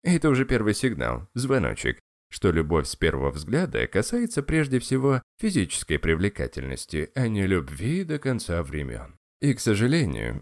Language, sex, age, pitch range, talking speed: Russian, male, 20-39, 80-120 Hz, 140 wpm